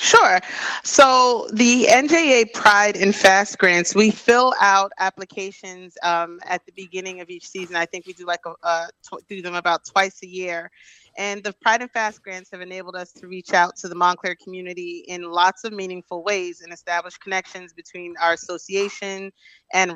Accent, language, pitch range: American, English, 175-200 Hz